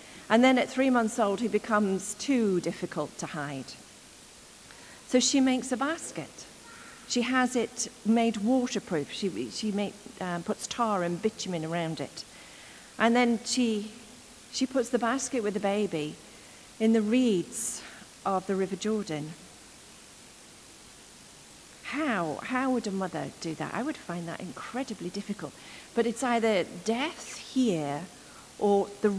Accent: British